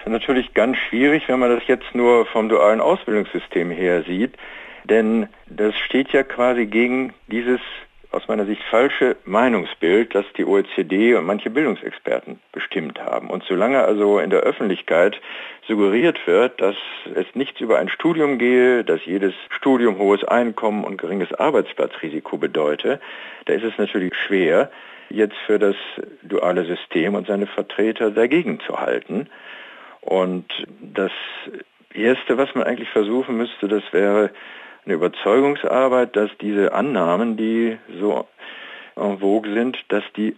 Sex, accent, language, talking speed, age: male, German, German, 145 wpm, 60-79